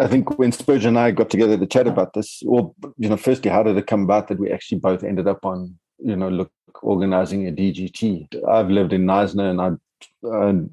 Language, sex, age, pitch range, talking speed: English, male, 30-49, 95-110 Hz, 230 wpm